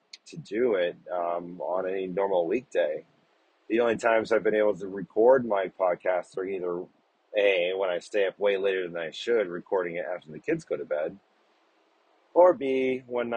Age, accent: 30-49, American